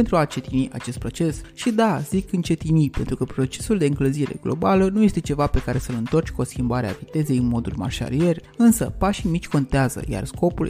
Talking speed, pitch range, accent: 190 wpm, 130-195 Hz, native